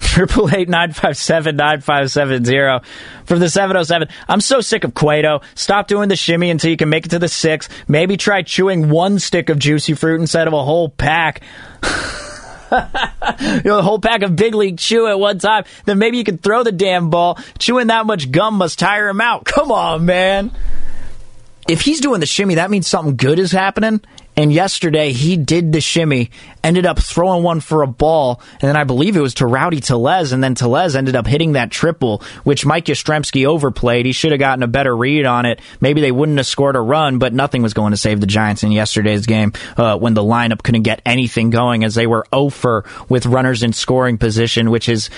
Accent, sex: American, male